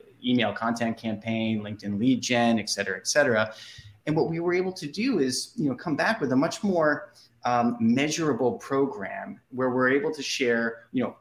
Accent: American